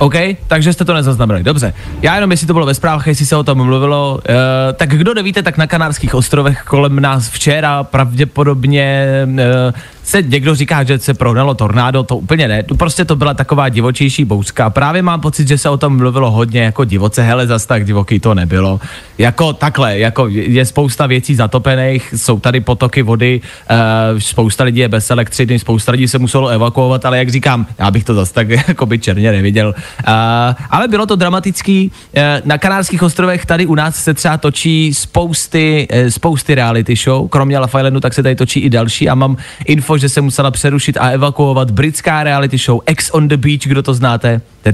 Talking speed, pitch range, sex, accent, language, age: 190 wpm, 120-150 Hz, male, native, Czech, 20-39